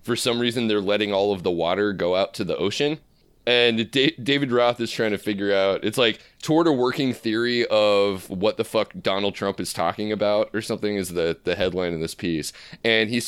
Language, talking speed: English, 215 wpm